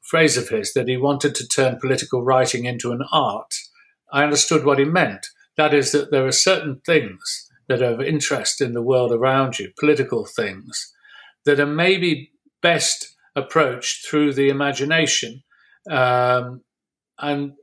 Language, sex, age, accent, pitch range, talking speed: English, male, 50-69, British, 125-150 Hz, 155 wpm